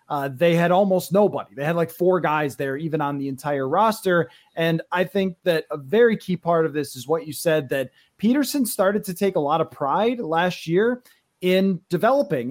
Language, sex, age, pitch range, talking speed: English, male, 30-49, 155-200 Hz, 205 wpm